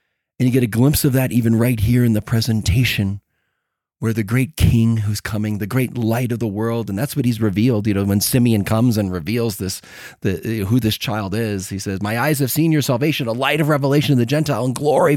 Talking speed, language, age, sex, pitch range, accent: 235 wpm, English, 30-49, male, 120-165 Hz, American